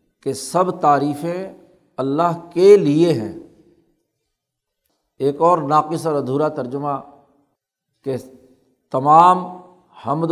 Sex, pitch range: male, 145-175 Hz